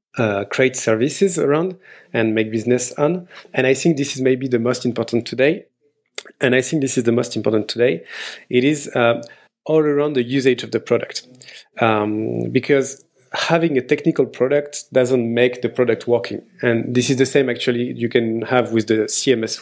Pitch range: 115-135 Hz